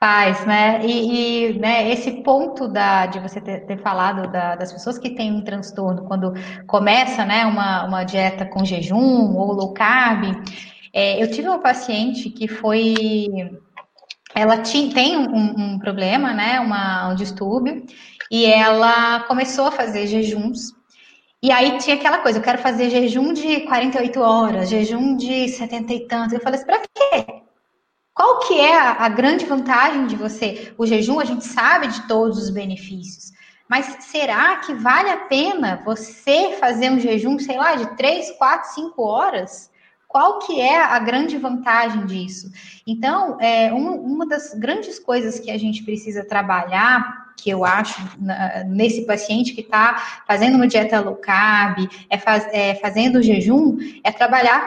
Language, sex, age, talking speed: Portuguese, female, 10-29, 155 wpm